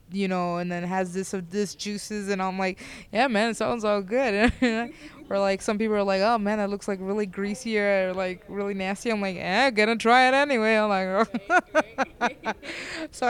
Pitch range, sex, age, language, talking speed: 190-220 Hz, female, 20-39, English, 210 wpm